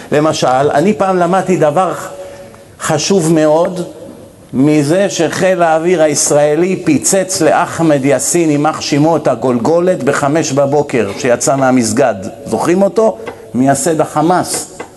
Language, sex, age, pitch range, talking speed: Hebrew, male, 50-69, 120-165 Hz, 100 wpm